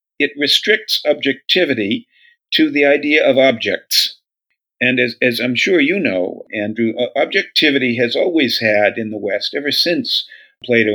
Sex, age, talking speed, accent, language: male, 50-69, 145 wpm, American, English